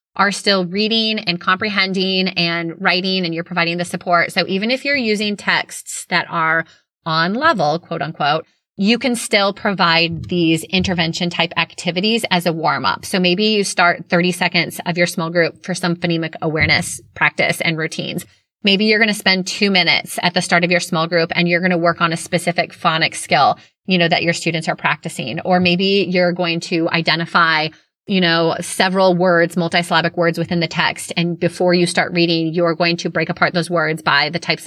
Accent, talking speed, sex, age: American, 195 wpm, female, 20-39